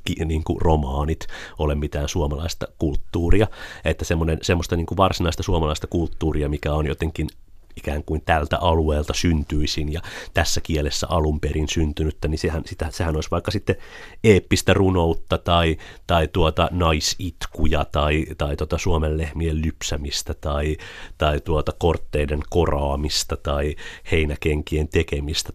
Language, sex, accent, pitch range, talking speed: Finnish, male, native, 75-90 Hz, 125 wpm